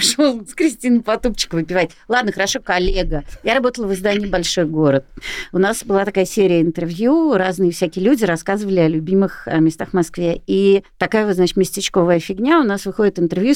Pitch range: 180-255 Hz